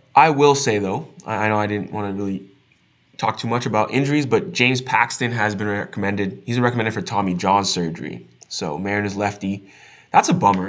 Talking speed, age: 190 wpm, 20-39